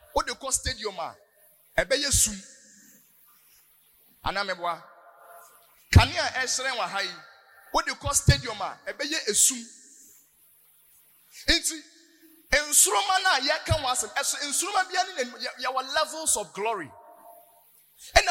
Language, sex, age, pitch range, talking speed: English, male, 30-49, 225-340 Hz, 50 wpm